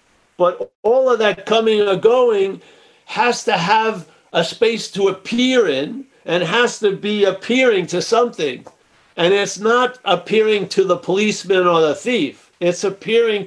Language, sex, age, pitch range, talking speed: English, male, 50-69, 175-230 Hz, 150 wpm